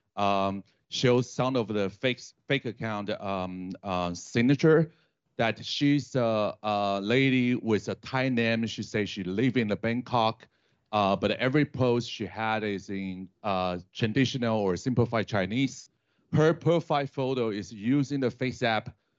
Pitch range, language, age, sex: 100-130 Hz, Chinese, 40-59, male